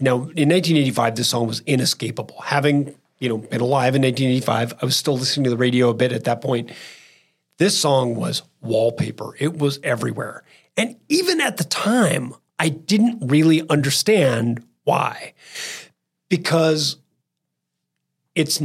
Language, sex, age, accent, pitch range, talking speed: English, male, 40-59, American, 130-175 Hz, 145 wpm